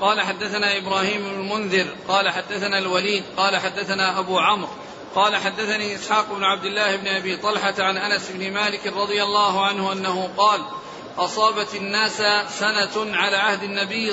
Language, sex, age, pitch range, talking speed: Arabic, male, 40-59, 195-215 Hz, 150 wpm